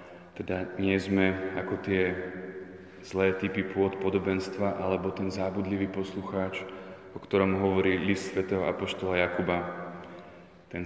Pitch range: 90-95 Hz